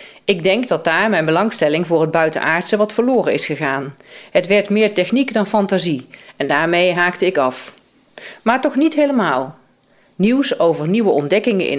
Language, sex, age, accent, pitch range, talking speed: Dutch, female, 40-59, Dutch, 160-225 Hz, 170 wpm